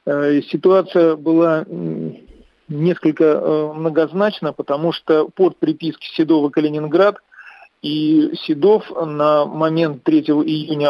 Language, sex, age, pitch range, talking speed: Russian, male, 40-59, 155-175 Hz, 100 wpm